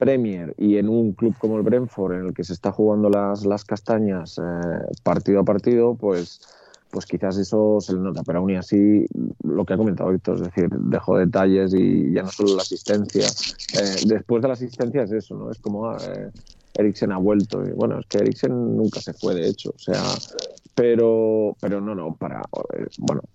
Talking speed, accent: 205 wpm, Spanish